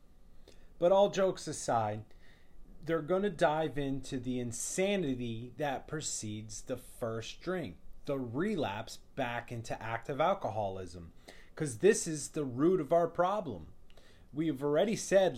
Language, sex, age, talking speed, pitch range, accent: English, male, 30-49, 125 wpm, 115-160 Hz, American